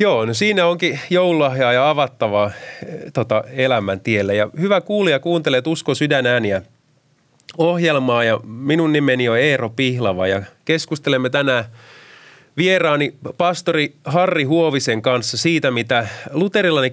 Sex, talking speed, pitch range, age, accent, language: male, 120 wpm, 120-160 Hz, 30-49, native, Finnish